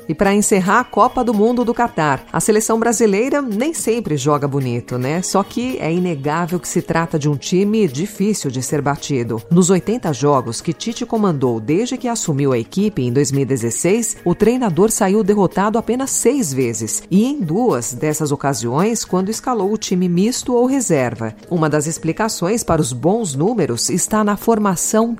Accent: Brazilian